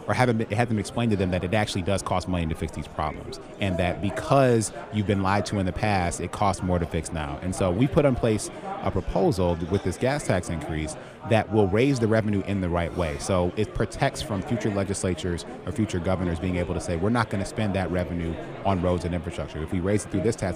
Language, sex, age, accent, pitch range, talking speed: English, male, 30-49, American, 85-105 Hz, 250 wpm